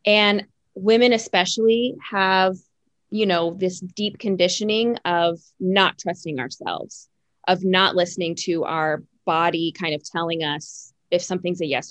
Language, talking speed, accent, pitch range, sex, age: English, 135 wpm, American, 175-220 Hz, female, 20-39